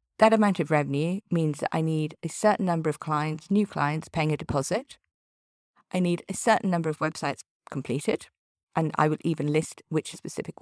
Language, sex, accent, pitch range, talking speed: English, female, British, 150-200 Hz, 185 wpm